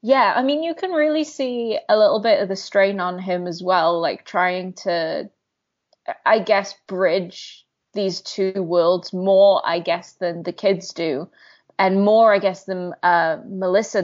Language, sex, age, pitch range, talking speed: English, female, 20-39, 180-215 Hz, 170 wpm